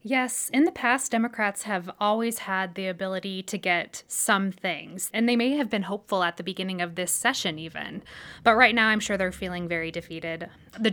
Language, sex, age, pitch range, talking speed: English, female, 20-39, 185-220 Hz, 205 wpm